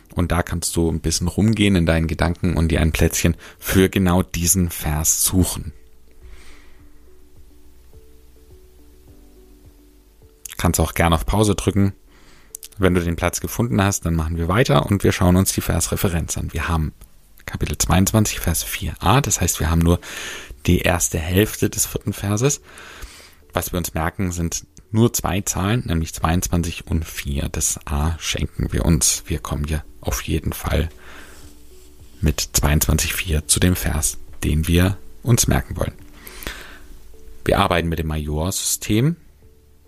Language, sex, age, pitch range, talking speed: German, male, 30-49, 75-95 Hz, 145 wpm